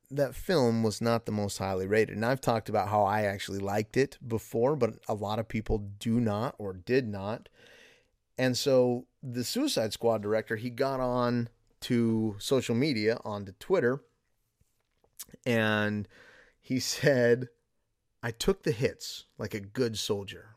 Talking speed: 155 wpm